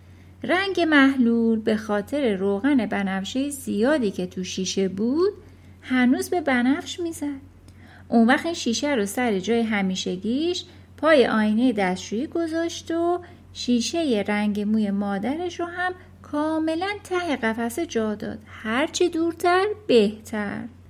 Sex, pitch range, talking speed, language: female, 210-320 Hz, 120 wpm, Persian